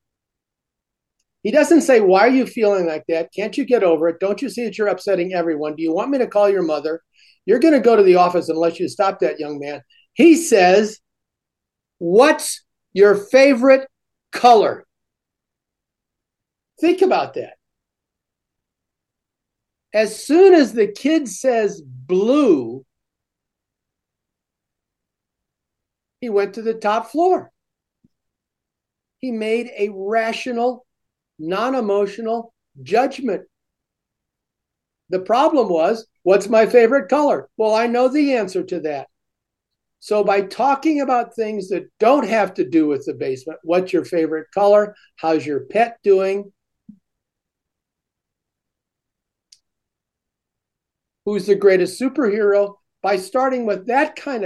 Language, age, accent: English, 60-79, American